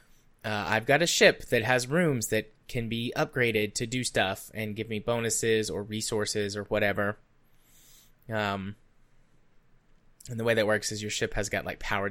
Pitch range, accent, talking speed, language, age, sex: 100-120 Hz, American, 180 wpm, English, 20-39, male